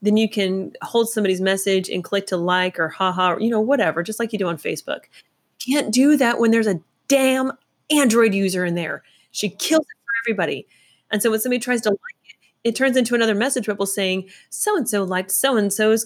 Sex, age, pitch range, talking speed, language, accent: female, 30-49, 180-220 Hz, 215 wpm, English, American